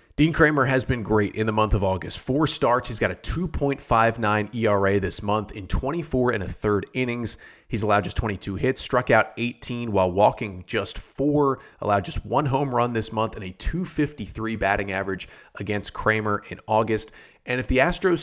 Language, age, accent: English, 30-49, American